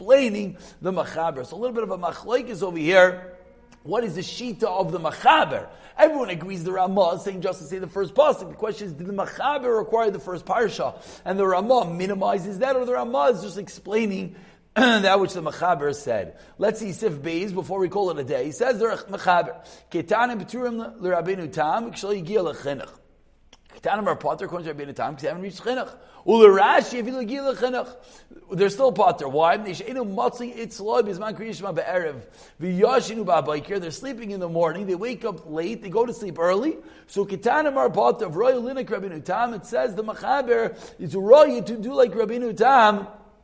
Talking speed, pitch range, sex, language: 140 wpm, 185-245 Hz, male, English